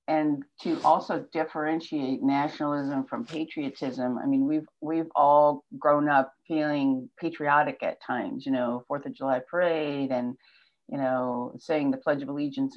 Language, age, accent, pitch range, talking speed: English, 50-69, American, 140-180 Hz, 150 wpm